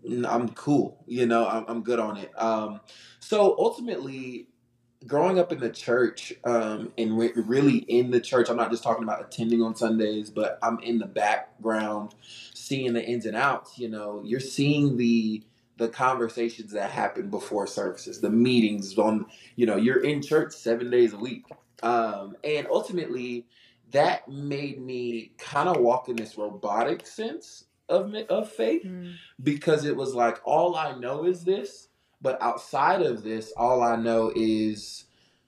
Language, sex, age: English, male, 20-39